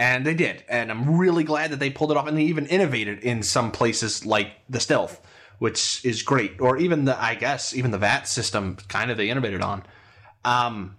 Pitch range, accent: 110-145 Hz, American